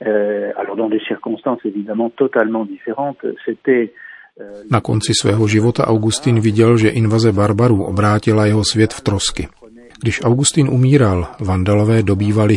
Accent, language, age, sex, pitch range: native, Czech, 40-59, male, 95-115 Hz